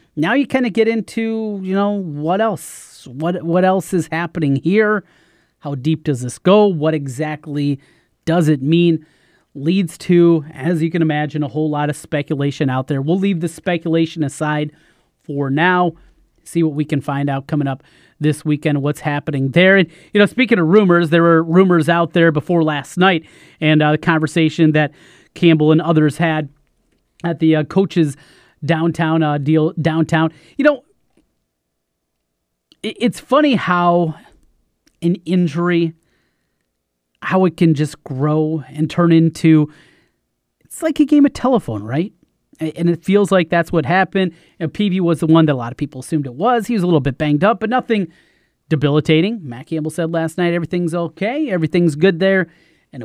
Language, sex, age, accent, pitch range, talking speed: English, male, 30-49, American, 150-185 Hz, 175 wpm